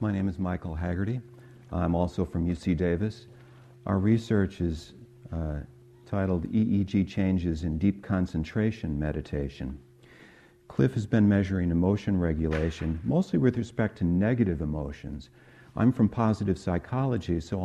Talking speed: 130 wpm